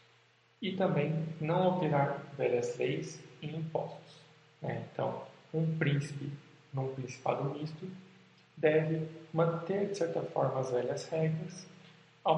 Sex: male